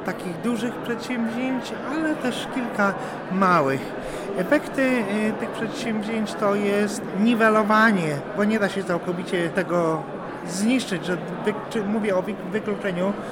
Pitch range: 180-225 Hz